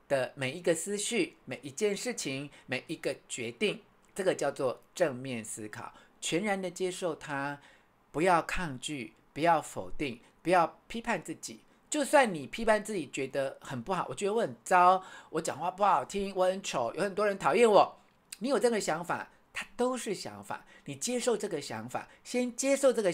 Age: 50-69